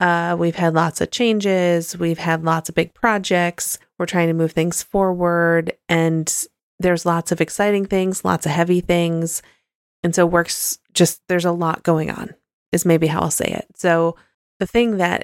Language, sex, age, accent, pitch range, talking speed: English, female, 30-49, American, 160-180 Hz, 185 wpm